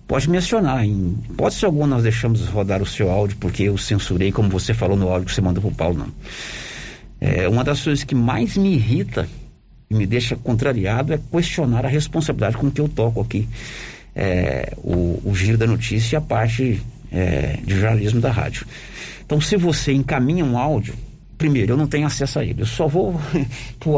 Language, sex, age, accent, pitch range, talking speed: Portuguese, male, 50-69, Brazilian, 110-145 Hz, 200 wpm